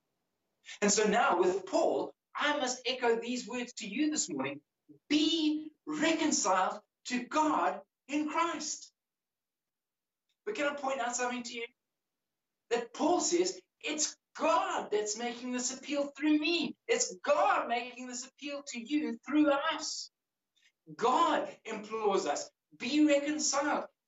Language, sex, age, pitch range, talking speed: English, male, 60-79, 215-310 Hz, 130 wpm